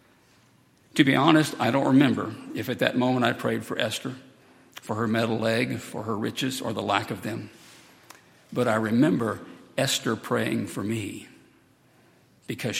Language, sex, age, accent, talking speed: English, male, 60-79, American, 160 wpm